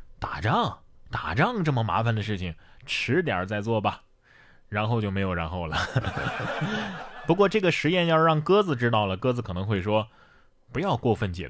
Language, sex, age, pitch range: Chinese, male, 20-39, 110-175 Hz